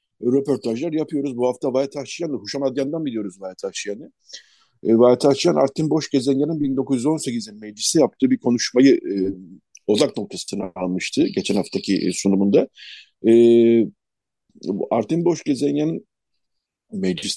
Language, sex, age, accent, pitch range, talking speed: Turkish, male, 50-69, native, 105-150 Hz, 105 wpm